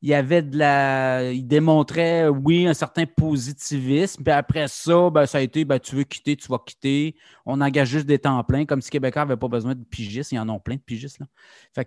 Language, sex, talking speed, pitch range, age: French, male, 235 wpm, 125-150 Hz, 30-49